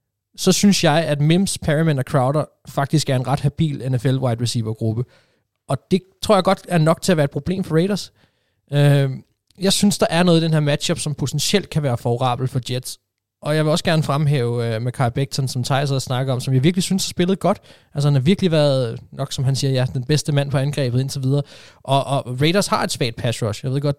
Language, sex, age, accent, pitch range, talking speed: Danish, male, 20-39, native, 120-150 Hz, 235 wpm